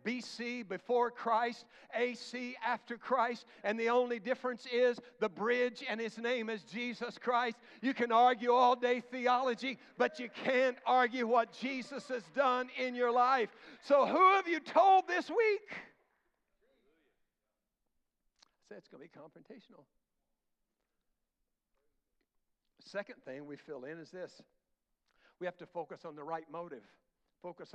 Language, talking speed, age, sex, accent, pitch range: English, 145 wpm, 60-79, male, American, 175-250 Hz